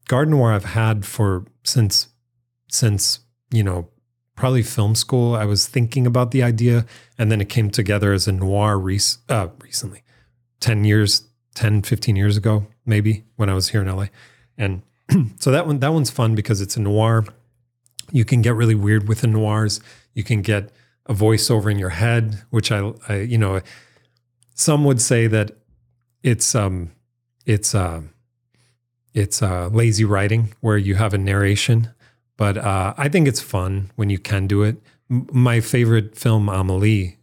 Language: English